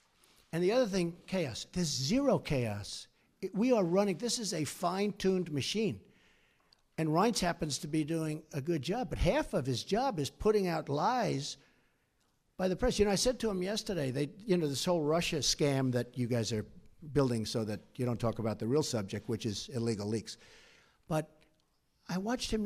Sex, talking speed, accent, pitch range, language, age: male, 200 wpm, American, 145-210 Hz, English, 60-79